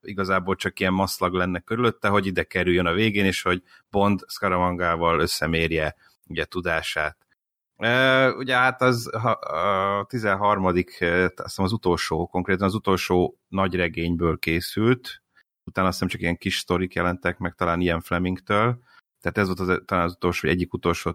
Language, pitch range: Hungarian, 90-105 Hz